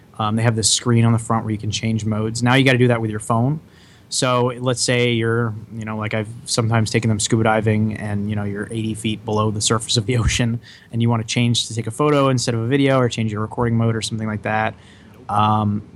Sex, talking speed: male, 265 wpm